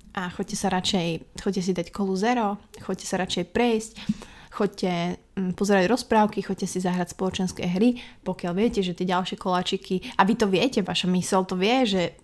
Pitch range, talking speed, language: 185-215 Hz, 175 wpm, Slovak